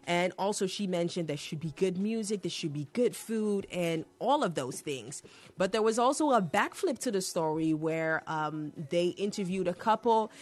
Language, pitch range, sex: English, 160-205 Hz, female